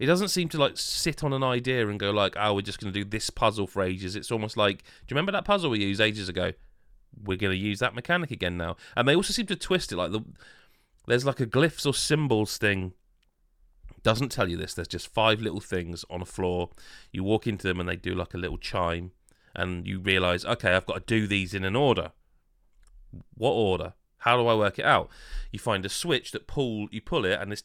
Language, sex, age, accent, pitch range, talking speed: English, male, 30-49, British, 90-120 Hz, 245 wpm